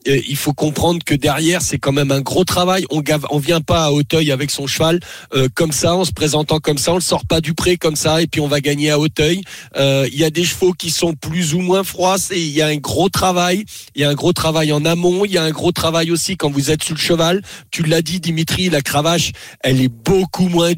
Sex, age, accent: male, 40-59, French